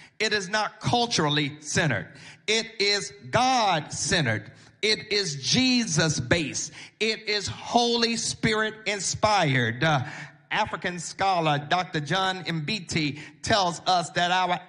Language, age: English, 40-59